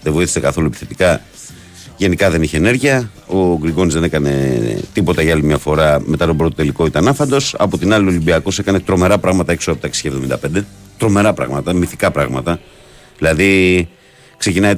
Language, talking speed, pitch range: Greek, 165 wpm, 80-100 Hz